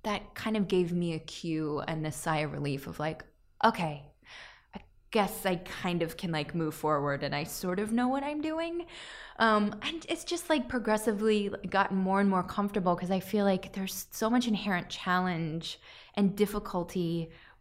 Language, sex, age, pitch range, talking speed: English, female, 20-39, 165-210 Hz, 185 wpm